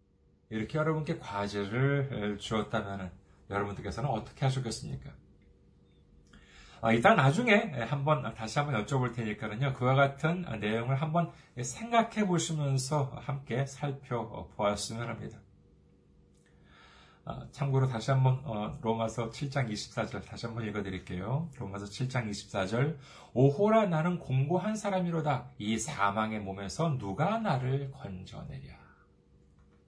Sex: male